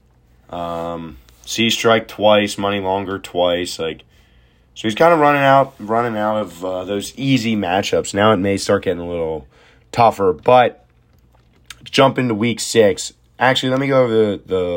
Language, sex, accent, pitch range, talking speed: English, male, American, 90-115 Hz, 165 wpm